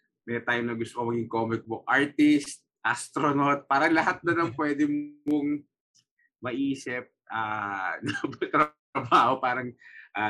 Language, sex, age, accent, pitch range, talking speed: Filipino, male, 20-39, native, 110-145 Hz, 120 wpm